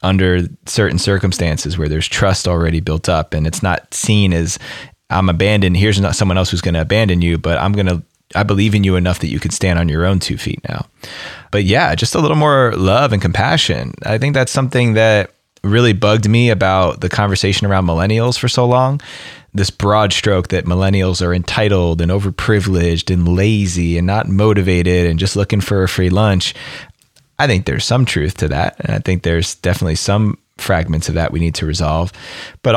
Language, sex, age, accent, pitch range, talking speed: English, male, 20-39, American, 90-110 Hz, 200 wpm